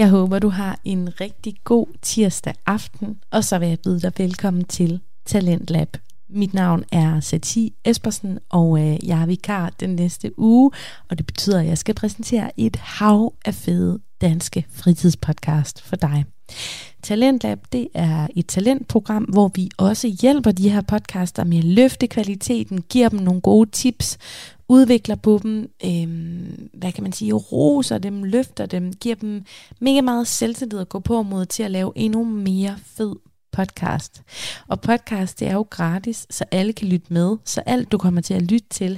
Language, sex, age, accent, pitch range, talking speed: Danish, female, 30-49, native, 175-225 Hz, 170 wpm